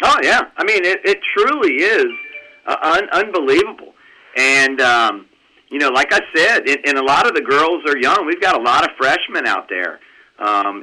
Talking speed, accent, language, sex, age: 200 wpm, American, English, male, 40-59